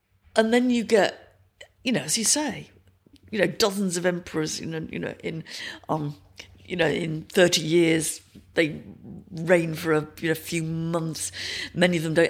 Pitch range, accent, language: 150-185 Hz, British, English